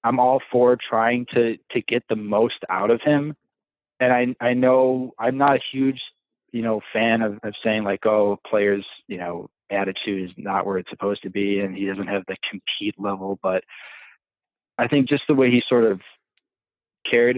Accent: American